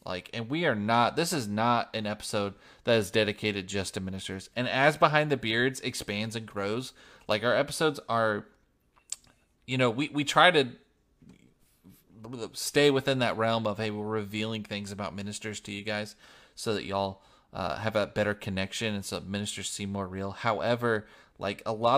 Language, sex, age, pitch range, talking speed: English, male, 30-49, 100-120 Hz, 175 wpm